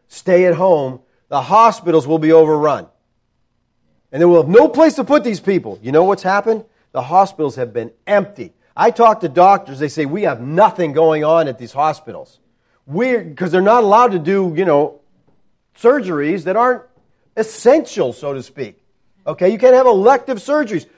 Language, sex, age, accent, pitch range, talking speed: English, male, 40-59, American, 150-245 Hz, 175 wpm